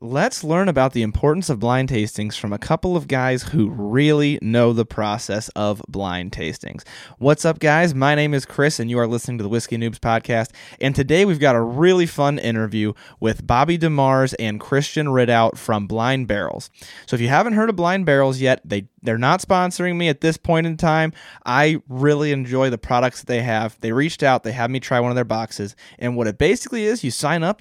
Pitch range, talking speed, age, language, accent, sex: 110-145 Hz, 215 wpm, 20-39, English, American, male